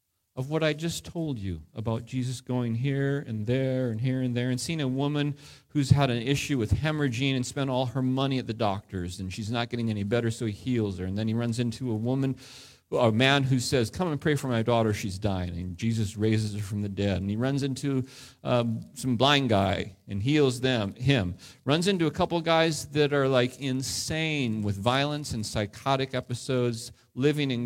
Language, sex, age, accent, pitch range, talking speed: English, male, 40-59, American, 110-140 Hz, 215 wpm